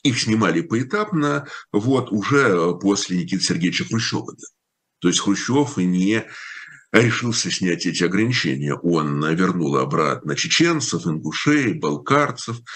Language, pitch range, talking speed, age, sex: Russian, 95-140 Hz, 110 wpm, 50-69, male